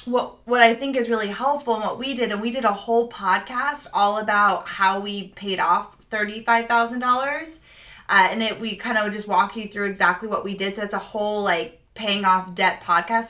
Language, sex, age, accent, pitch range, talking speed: English, female, 20-39, American, 200-235 Hz, 210 wpm